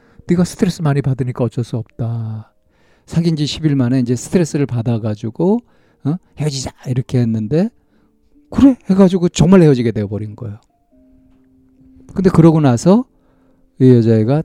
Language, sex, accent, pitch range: Korean, male, native, 115-155 Hz